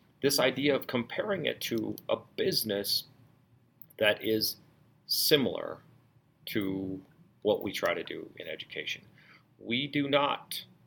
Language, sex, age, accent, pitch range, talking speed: English, male, 40-59, American, 105-145 Hz, 120 wpm